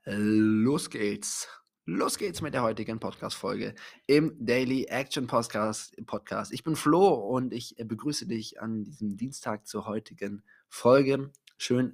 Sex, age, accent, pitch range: male, 20-39, German, 110-135 Hz